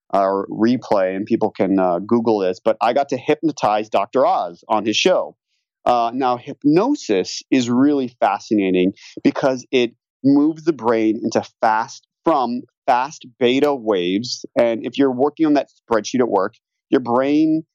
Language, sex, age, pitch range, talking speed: English, male, 30-49, 105-140 Hz, 155 wpm